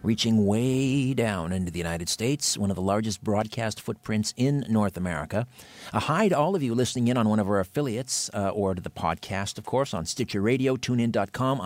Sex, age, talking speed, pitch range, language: male, 50-69, 200 wpm, 105-130 Hz, English